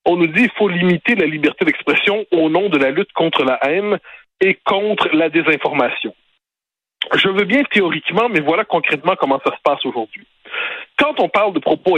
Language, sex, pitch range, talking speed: French, male, 155-240 Hz, 190 wpm